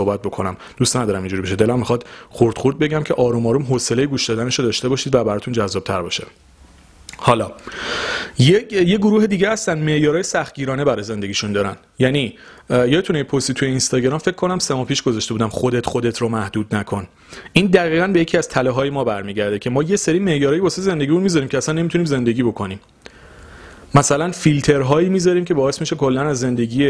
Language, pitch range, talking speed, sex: Persian, 120-155 Hz, 180 wpm, male